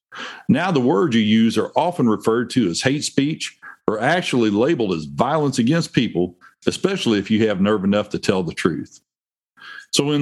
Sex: male